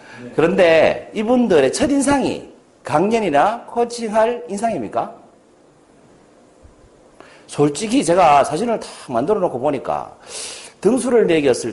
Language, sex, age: Korean, male, 40-59